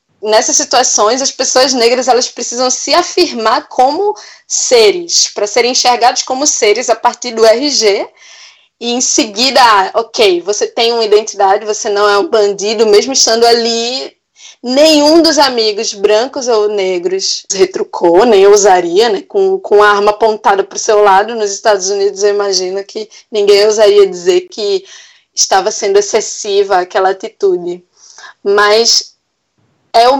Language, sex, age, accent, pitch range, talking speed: Portuguese, female, 20-39, Brazilian, 215-355 Hz, 145 wpm